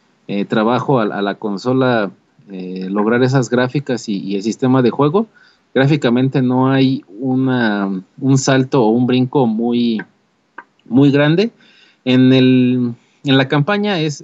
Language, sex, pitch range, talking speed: Spanish, male, 110-135 Hz, 145 wpm